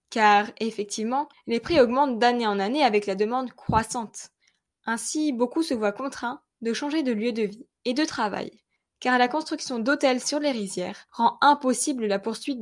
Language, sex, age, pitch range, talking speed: French, female, 10-29, 215-275 Hz, 175 wpm